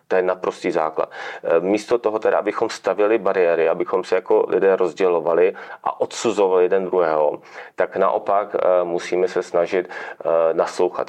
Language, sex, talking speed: Czech, male, 135 wpm